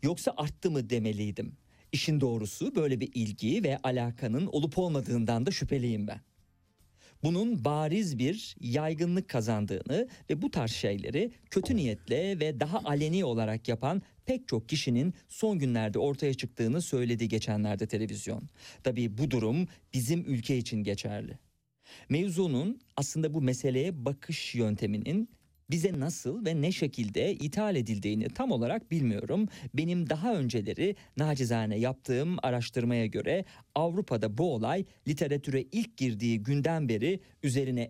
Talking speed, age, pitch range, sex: 130 wpm, 50-69, 115-160 Hz, male